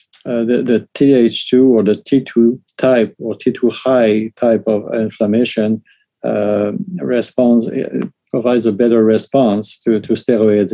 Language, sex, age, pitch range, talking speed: English, male, 50-69, 110-120 Hz, 125 wpm